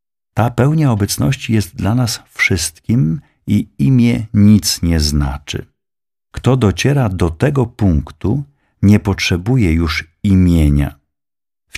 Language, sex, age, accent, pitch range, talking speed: Polish, male, 50-69, native, 75-100 Hz, 110 wpm